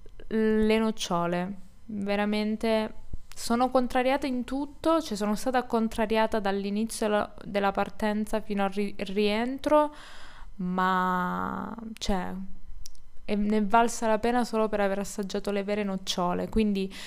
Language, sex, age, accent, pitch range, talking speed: Italian, female, 20-39, native, 195-225 Hz, 115 wpm